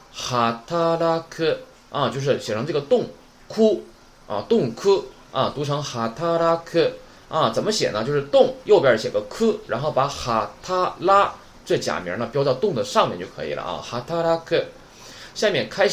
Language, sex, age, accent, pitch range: Chinese, male, 20-39, native, 130-205 Hz